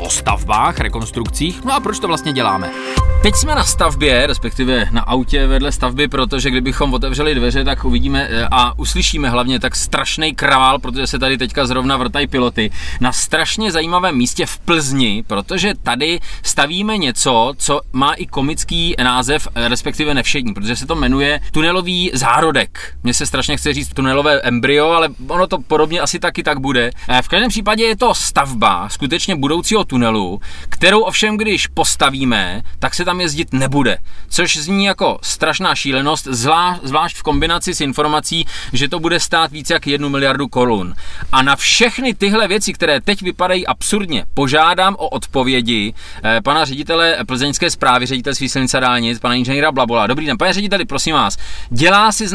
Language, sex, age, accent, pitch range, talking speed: Czech, male, 20-39, native, 130-170 Hz, 165 wpm